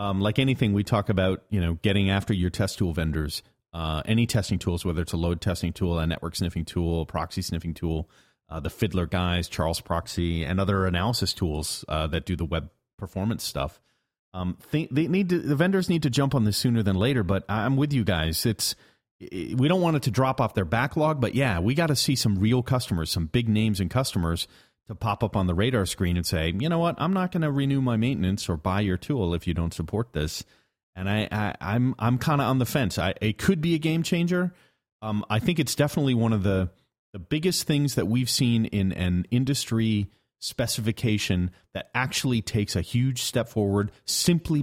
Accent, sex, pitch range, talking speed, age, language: American, male, 90-125 Hz, 220 wpm, 40-59, English